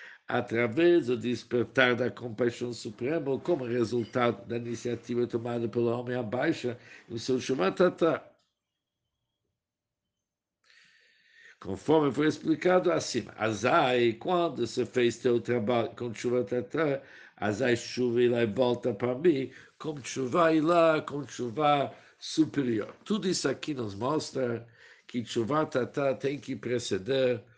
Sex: male